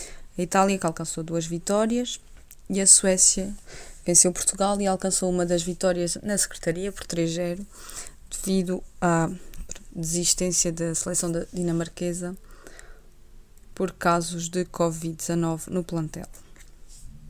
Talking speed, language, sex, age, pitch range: 110 wpm, Portuguese, female, 20-39, 170-190 Hz